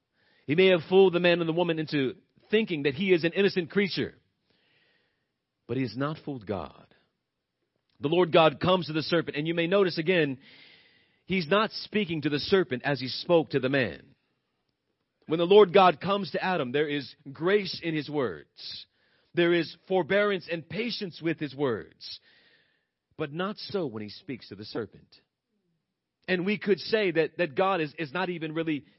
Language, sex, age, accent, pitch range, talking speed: English, male, 40-59, American, 130-185 Hz, 185 wpm